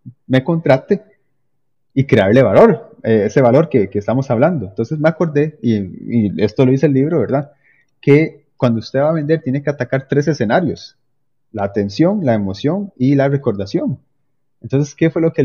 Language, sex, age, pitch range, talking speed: Spanish, male, 30-49, 110-145 Hz, 180 wpm